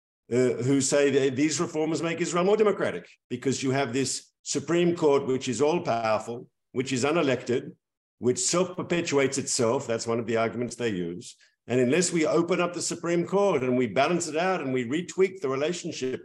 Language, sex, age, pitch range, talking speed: English, male, 50-69, 125-170 Hz, 190 wpm